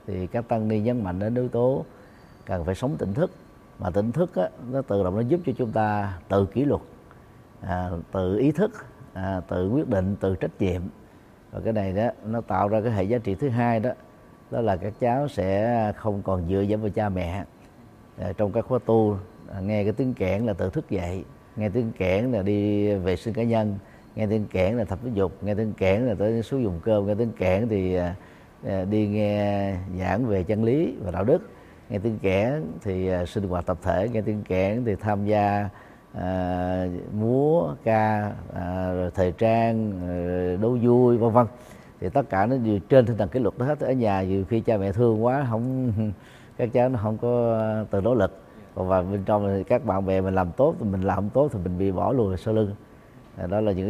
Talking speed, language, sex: 220 wpm, Vietnamese, male